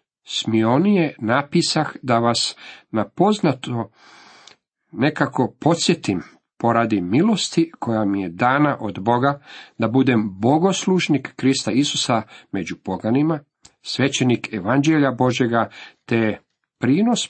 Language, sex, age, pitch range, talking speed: Croatian, male, 50-69, 110-160 Hz, 95 wpm